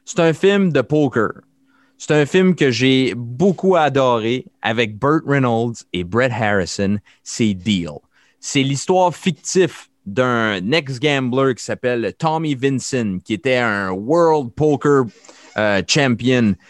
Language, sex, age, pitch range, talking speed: French, male, 30-49, 110-145 Hz, 135 wpm